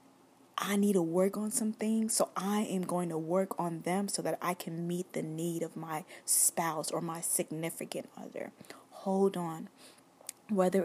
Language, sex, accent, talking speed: English, female, American, 175 wpm